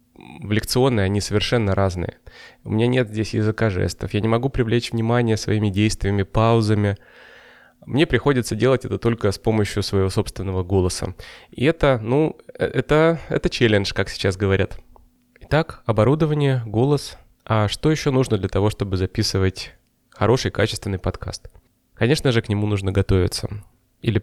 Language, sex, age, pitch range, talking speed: Russian, male, 20-39, 100-125 Hz, 145 wpm